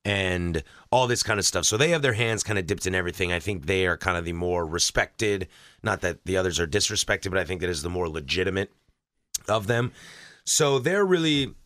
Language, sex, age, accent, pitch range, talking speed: English, male, 30-49, American, 90-115 Hz, 220 wpm